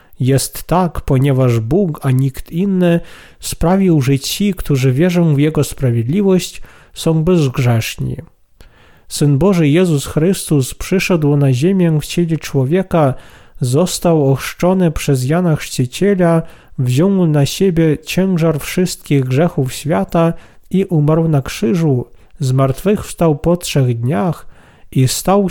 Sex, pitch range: male, 135-175 Hz